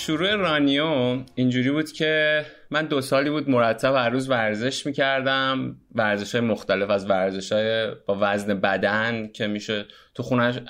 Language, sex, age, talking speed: Persian, male, 30-49, 145 wpm